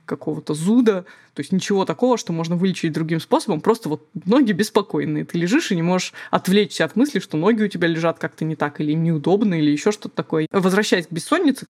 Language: Russian